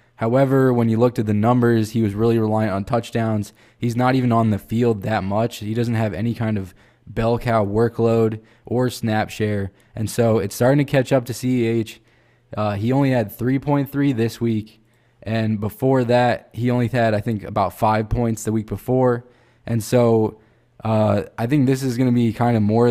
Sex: male